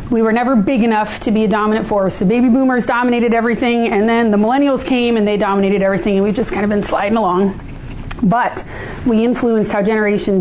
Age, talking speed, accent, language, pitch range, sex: 30-49, 215 wpm, American, English, 210-255 Hz, female